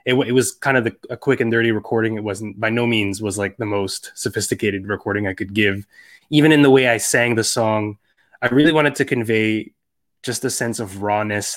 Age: 20-39